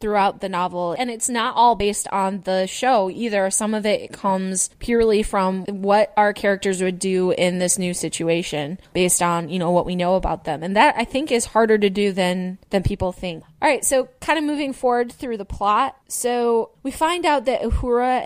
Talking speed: 210 wpm